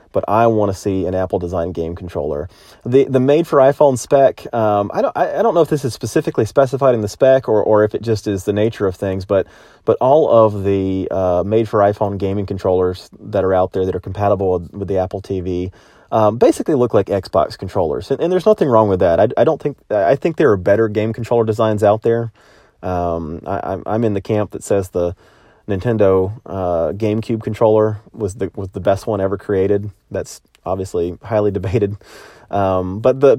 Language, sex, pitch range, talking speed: English, male, 95-115 Hz, 205 wpm